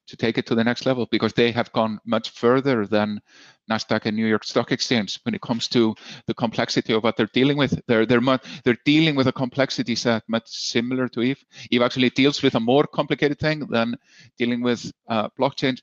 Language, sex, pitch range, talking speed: English, male, 105-125 Hz, 215 wpm